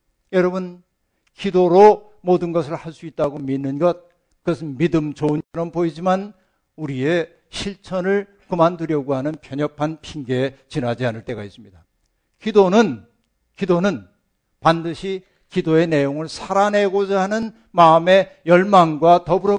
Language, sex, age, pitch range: Korean, male, 50-69, 140-185 Hz